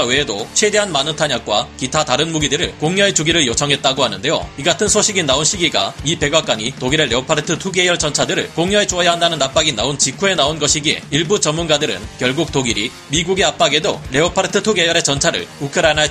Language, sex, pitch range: Korean, male, 145-185 Hz